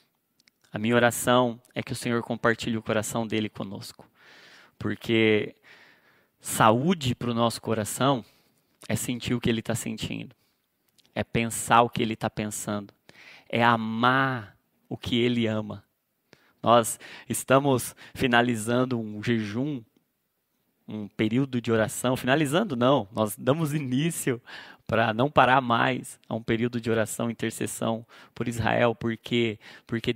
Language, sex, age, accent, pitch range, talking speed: Portuguese, male, 20-39, Brazilian, 110-130 Hz, 135 wpm